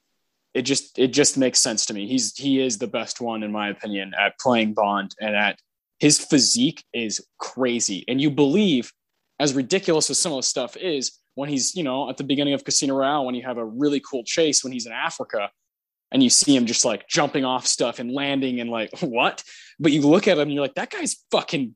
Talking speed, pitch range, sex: 230 wpm, 130-190 Hz, male